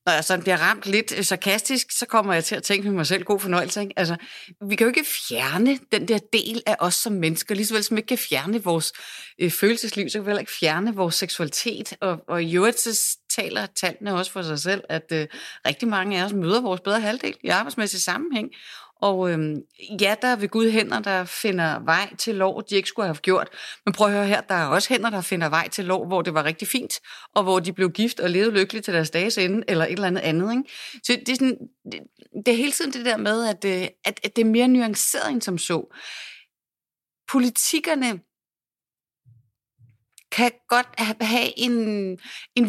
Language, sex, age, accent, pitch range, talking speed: Danish, female, 30-49, native, 180-230 Hz, 205 wpm